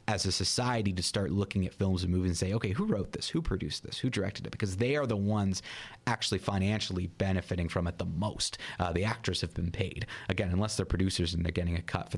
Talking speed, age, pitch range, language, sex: 245 wpm, 30-49, 85-105 Hz, English, male